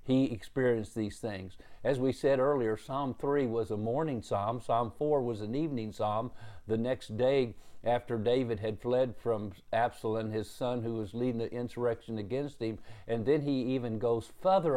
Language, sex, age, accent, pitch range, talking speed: English, male, 50-69, American, 110-130 Hz, 180 wpm